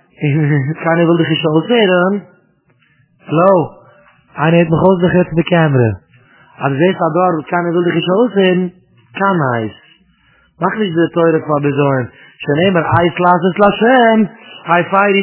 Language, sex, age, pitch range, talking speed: English, male, 30-49, 150-190 Hz, 65 wpm